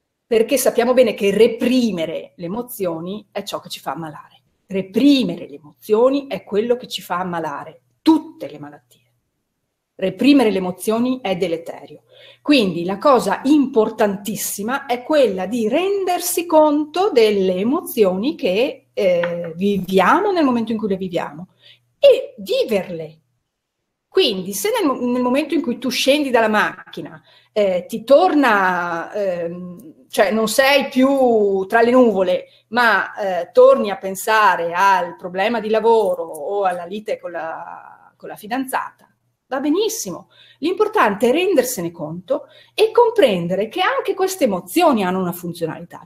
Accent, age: native, 40-59